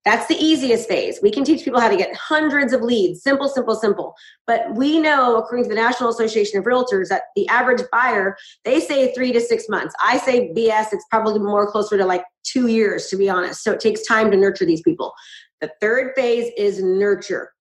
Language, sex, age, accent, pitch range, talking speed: English, female, 30-49, American, 220-275 Hz, 220 wpm